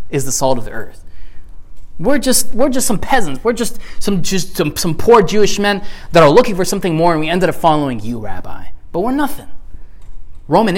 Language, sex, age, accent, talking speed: English, male, 20-39, American, 210 wpm